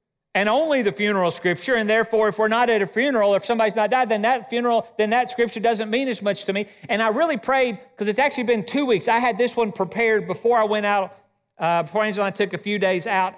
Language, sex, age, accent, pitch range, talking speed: English, male, 40-59, American, 190-245 Hz, 260 wpm